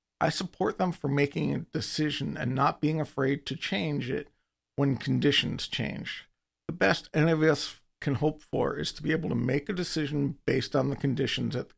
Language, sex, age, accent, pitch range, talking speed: English, male, 50-69, American, 100-150 Hz, 200 wpm